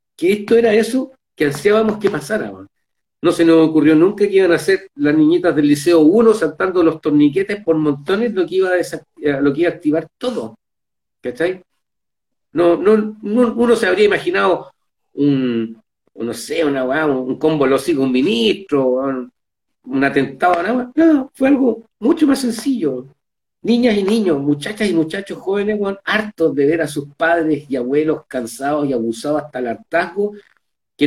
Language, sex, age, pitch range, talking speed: Spanish, male, 50-69, 145-215 Hz, 170 wpm